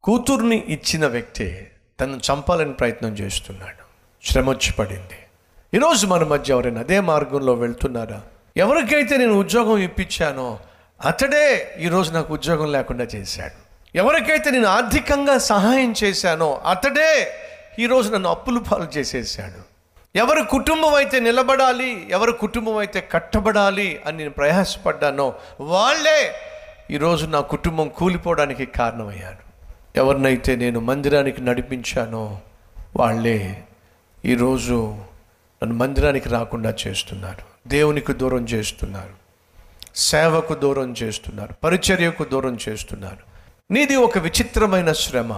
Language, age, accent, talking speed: Telugu, 50-69, native, 100 wpm